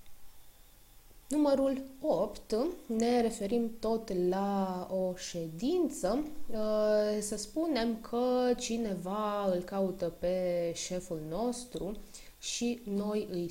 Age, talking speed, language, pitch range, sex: 20-39, 90 wpm, Romanian, 185-245 Hz, female